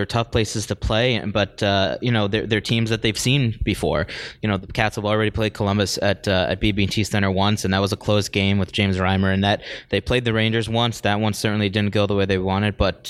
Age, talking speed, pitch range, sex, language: 20-39, 255 wpm, 100-115 Hz, male, English